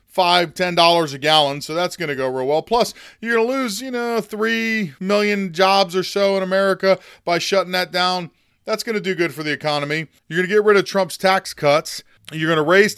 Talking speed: 230 wpm